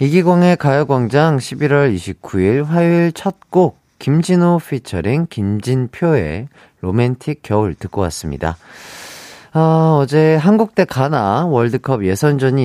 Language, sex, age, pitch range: Korean, male, 40-59, 90-145 Hz